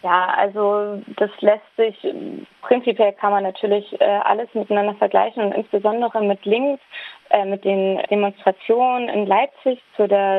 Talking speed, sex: 135 wpm, female